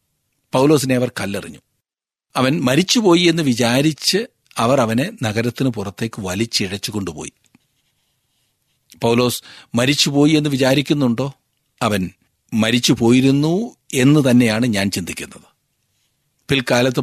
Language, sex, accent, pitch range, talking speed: Malayalam, male, native, 115-150 Hz, 80 wpm